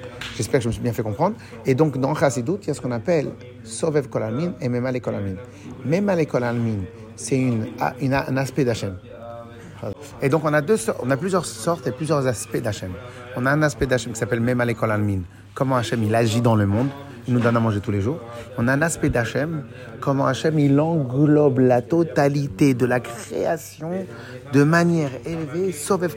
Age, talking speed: 30-49, 210 wpm